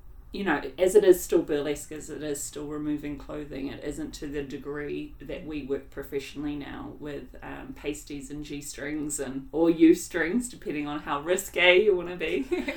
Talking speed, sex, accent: 185 wpm, female, Australian